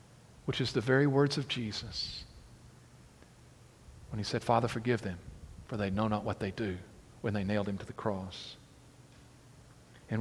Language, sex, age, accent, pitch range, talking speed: English, male, 50-69, American, 105-135 Hz, 165 wpm